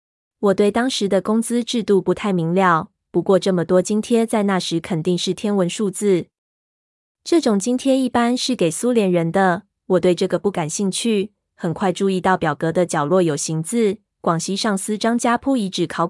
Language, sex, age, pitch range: Chinese, female, 20-39, 175-215 Hz